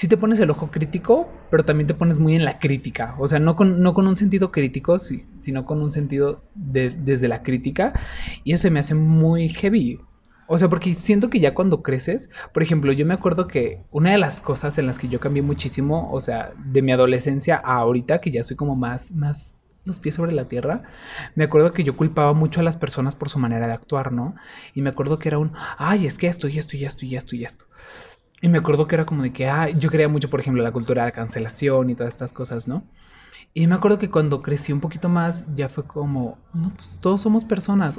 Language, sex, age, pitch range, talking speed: Spanish, male, 20-39, 135-165 Hz, 245 wpm